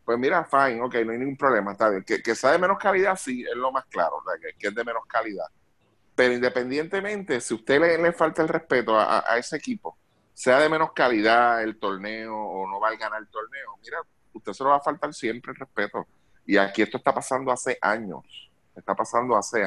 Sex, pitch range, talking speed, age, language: male, 95-145 Hz, 225 wpm, 30-49, Spanish